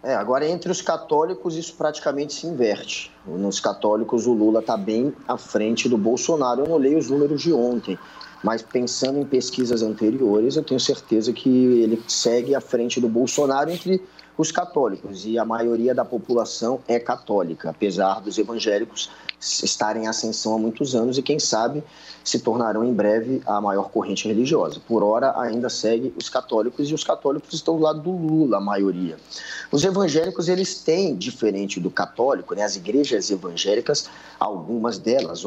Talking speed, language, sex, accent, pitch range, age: 170 wpm, Portuguese, male, Brazilian, 110-160 Hz, 20-39